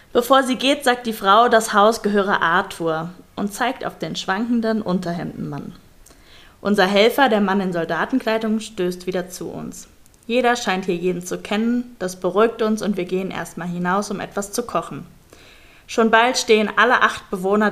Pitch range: 180-220 Hz